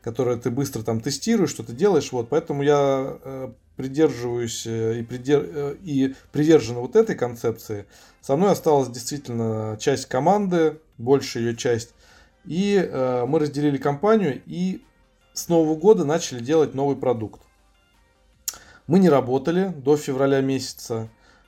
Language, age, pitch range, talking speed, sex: Russian, 20-39, 120-150 Hz, 130 wpm, male